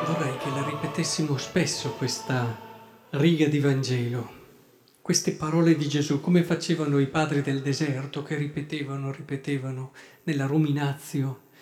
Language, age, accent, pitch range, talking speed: Italian, 40-59, native, 145-210 Hz, 125 wpm